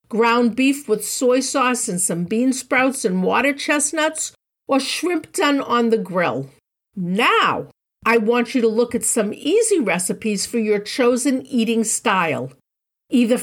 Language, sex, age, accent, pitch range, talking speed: English, female, 50-69, American, 220-285 Hz, 150 wpm